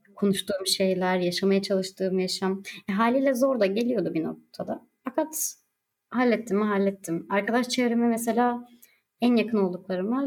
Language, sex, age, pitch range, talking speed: Turkish, male, 30-49, 180-230 Hz, 125 wpm